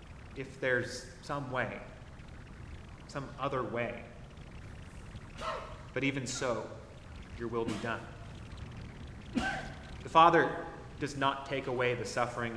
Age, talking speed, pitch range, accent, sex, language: 30-49, 105 wpm, 125-165 Hz, American, male, English